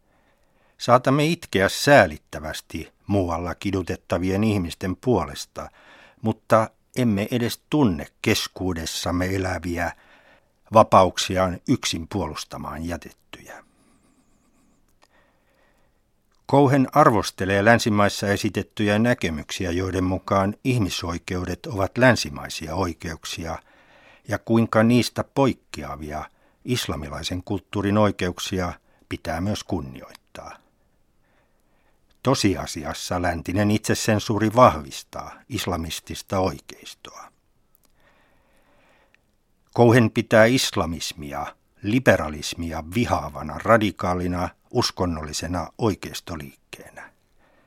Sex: male